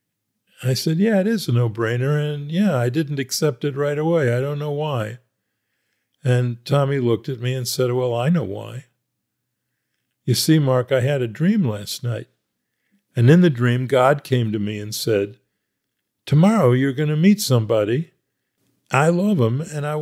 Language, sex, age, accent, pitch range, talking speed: English, male, 50-69, American, 125-160 Hz, 180 wpm